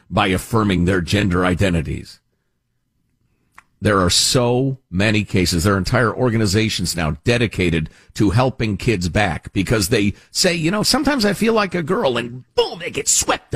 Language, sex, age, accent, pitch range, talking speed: English, male, 50-69, American, 95-135 Hz, 160 wpm